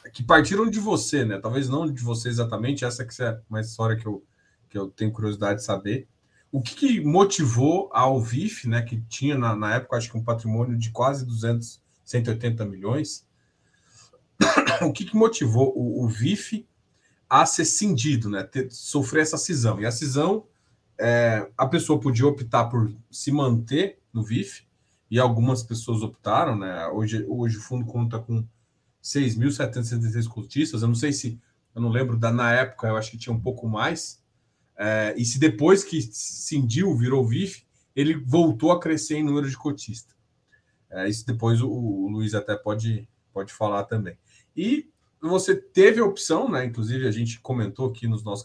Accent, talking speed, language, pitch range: Brazilian, 170 wpm, Portuguese, 110-135 Hz